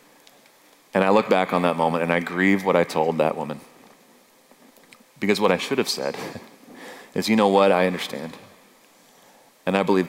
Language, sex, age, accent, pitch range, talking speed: English, male, 30-49, American, 90-145 Hz, 180 wpm